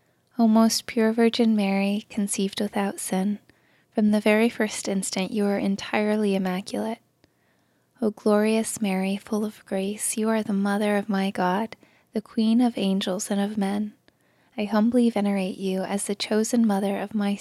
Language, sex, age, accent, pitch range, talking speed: English, female, 20-39, American, 195-215 Hz, 160 wpm